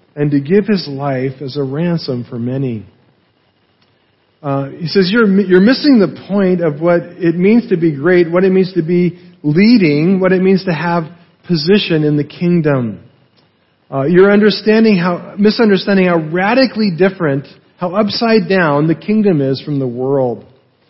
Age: 40-59